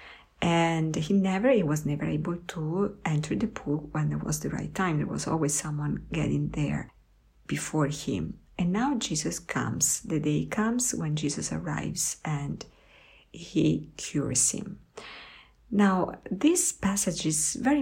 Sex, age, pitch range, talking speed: female, 50-69, 150-200 Hz, 150 wpm